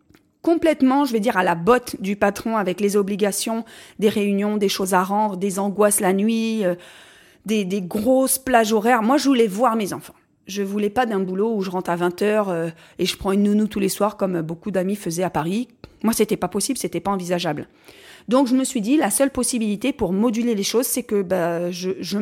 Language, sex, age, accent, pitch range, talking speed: French, female, 30-49, French, 190-240 Hz, 225 wpm